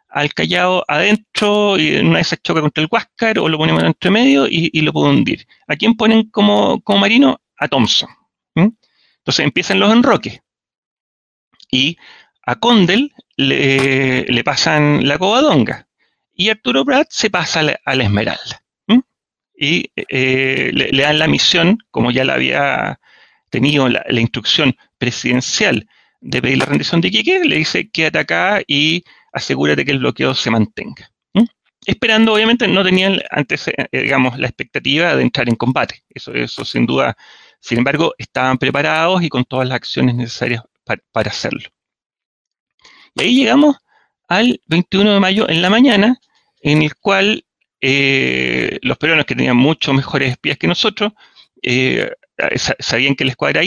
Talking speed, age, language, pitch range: 160 wpm, 30-49, Spanish, 130-210 Hz